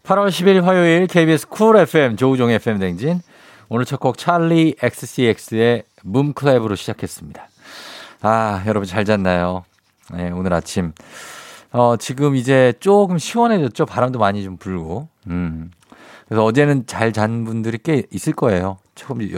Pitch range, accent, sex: 95-145 Hz, native, male